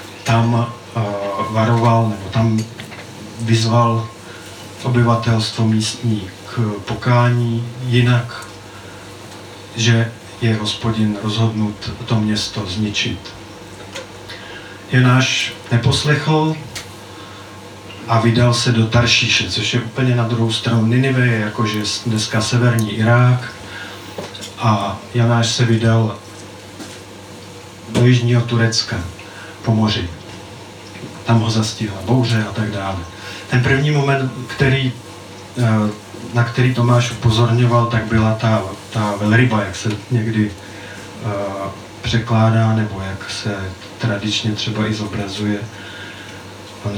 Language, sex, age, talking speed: Czech, male, 40-59, 100 wpm